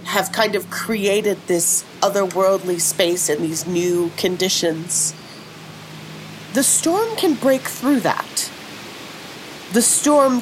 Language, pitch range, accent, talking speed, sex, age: English, 170-210 Hz, American, 110 wpm, female, 40-59